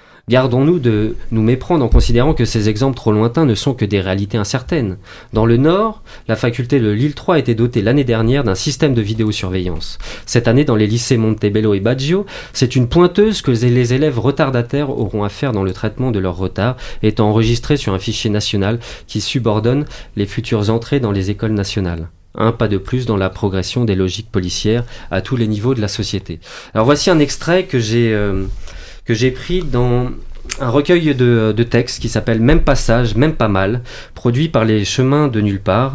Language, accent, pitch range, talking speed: French, French, 105-135 Hz, 205 wpm